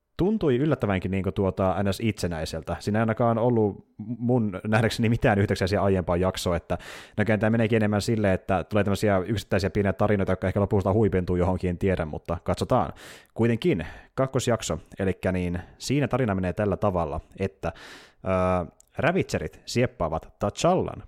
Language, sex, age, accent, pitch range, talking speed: Finnish, male, 30-49, native, 90-120 Hz, 140 wpm